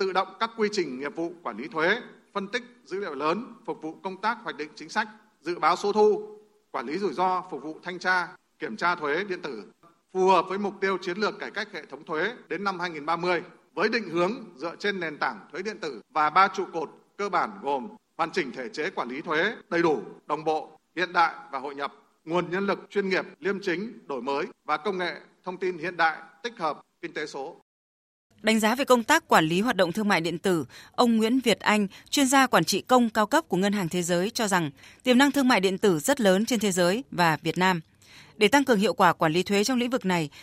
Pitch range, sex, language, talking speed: 170-225 Hz, male, Vietnamese, 245 wpm